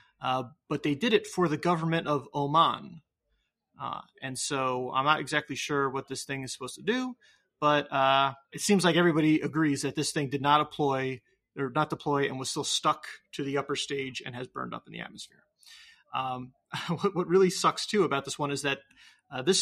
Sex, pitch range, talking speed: male, 135-170 Hz, 210 wpm